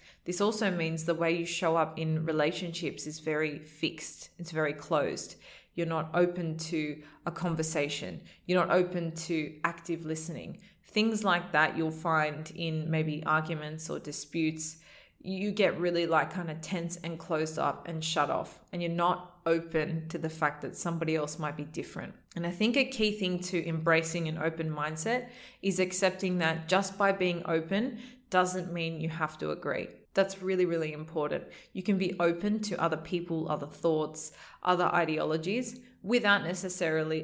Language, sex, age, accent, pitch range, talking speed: English, female, 20-39, Australian, 160-185 Hz, 170 wpm